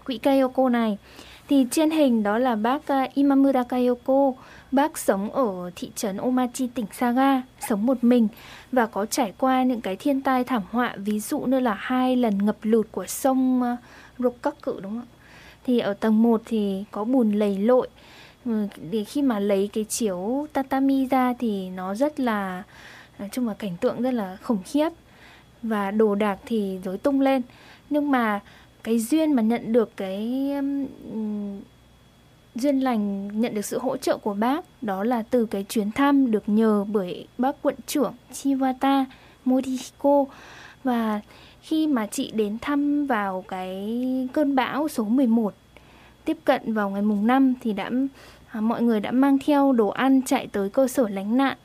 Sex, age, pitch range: female, 10-29, 215-270 Hz